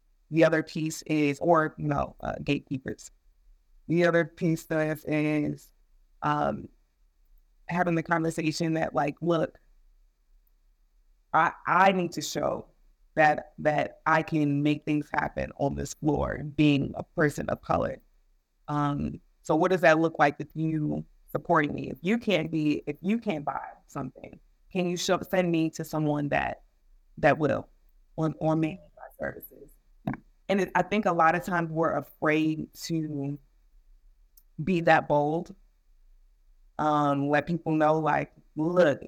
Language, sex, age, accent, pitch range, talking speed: English, female, 30-49, American, 145-180 Hz, 150 wpm